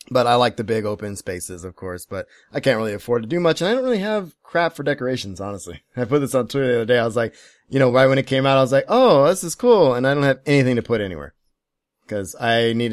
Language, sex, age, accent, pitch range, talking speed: English, male, 20-39, American, 110-135 Hz, 290 wpm